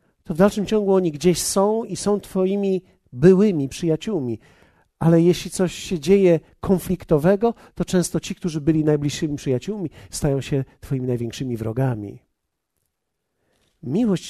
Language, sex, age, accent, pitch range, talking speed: Polish, male, 50-69, native, 125-180 Hz, 130 wpm